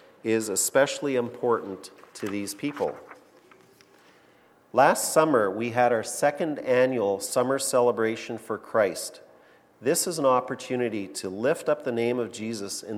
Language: English